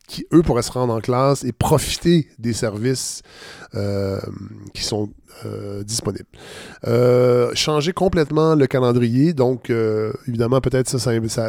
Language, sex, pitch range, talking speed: French, male, 110-135 Hz, 140 wpm